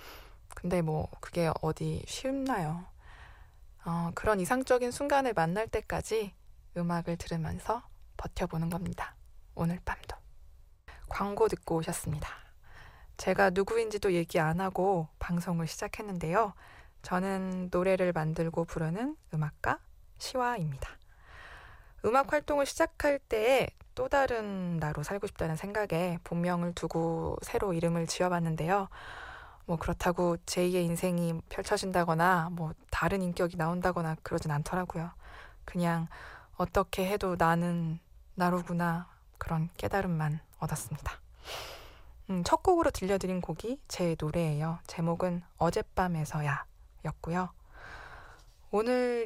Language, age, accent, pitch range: Korean, 20-39, native, 165-205 Hz